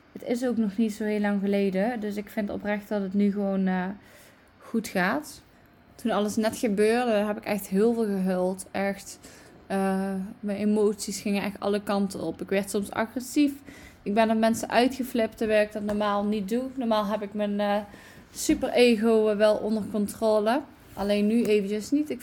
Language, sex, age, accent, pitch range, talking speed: Dutch, female, 20-39, Dutch, 205-245 Hz, 185 wpm